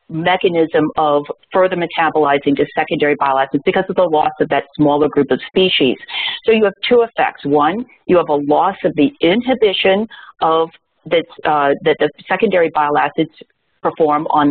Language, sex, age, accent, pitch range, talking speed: English, female, 40-59, American, 150-190 Hz, 170 wpm